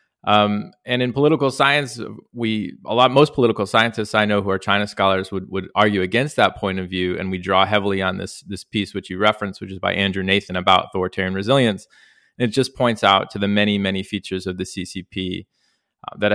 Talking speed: 215 wpm